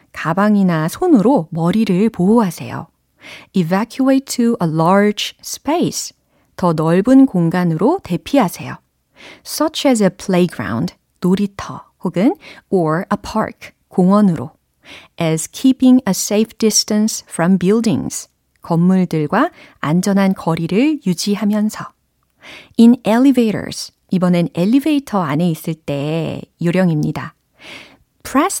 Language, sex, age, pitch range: Korean, female, 40-59, 170-235 Hz